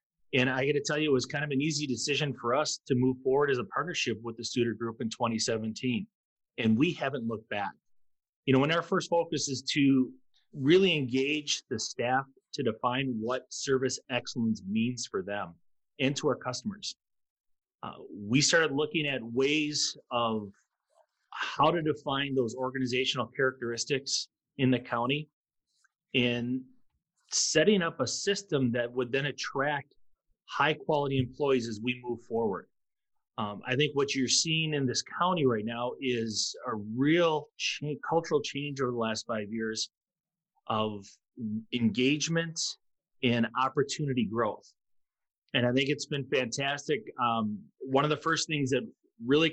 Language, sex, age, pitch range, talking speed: English, male, 30-49, 120-150 Hz, 155 wpm